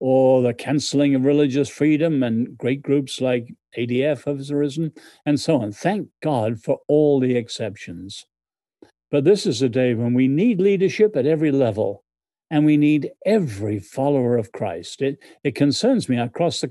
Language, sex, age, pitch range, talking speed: English, male, 50-69, 125-165 Hz, 170 wpm